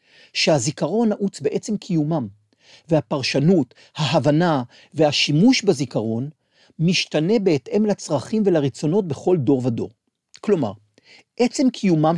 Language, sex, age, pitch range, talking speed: Hebrew, male, 50-69, 145-200 Hz, 90 wpm